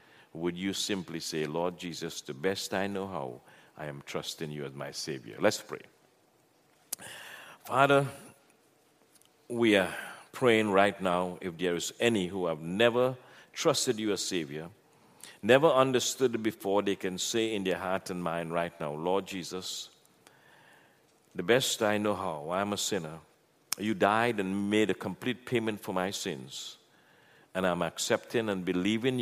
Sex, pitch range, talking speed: male, 90-120 Hz, 155 wpm